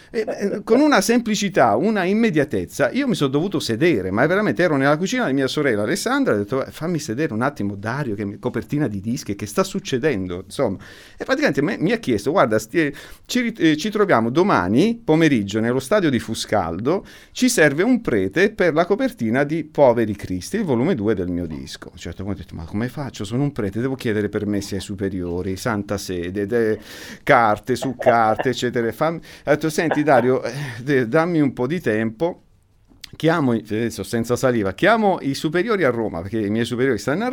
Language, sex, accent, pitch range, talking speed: Italian, male, native, 110-185 Hz, 190 wpm